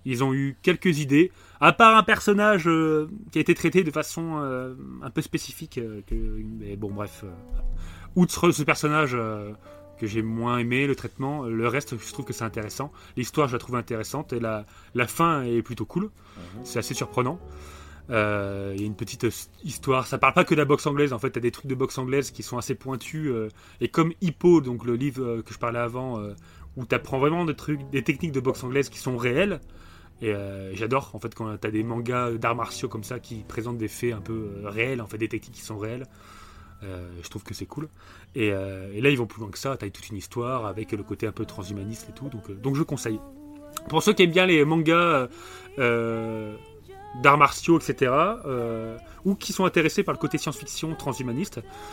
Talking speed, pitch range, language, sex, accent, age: 225 wpm, 105-145 Hz, French, male, French, 30-49